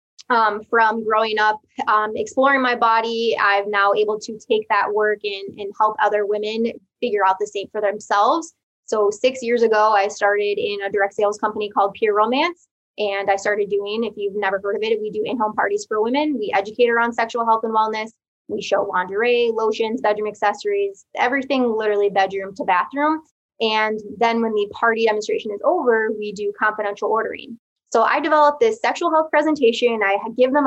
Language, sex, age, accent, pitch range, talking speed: English, female, 20-39, American, 210-270 Hz, 190 wpm